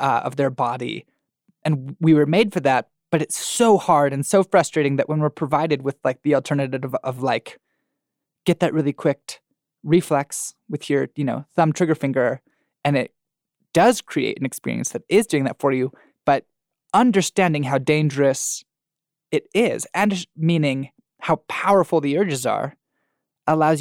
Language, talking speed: English, 170 wpm